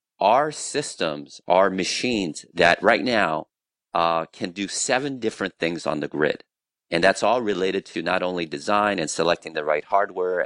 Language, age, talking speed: English, 40-59, 165 wpm